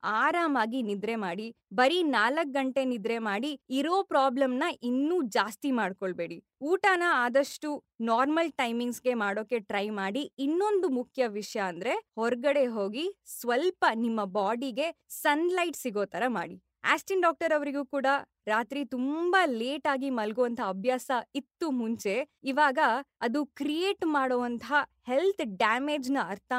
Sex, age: female, 20-39